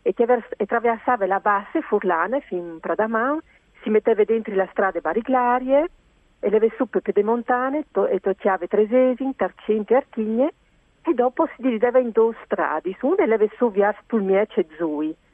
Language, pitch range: Italian, 200-265 Hz